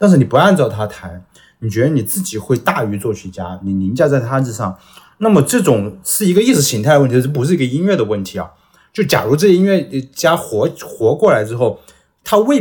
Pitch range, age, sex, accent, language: 105-150 Hz, 20-39, male, native, Chinese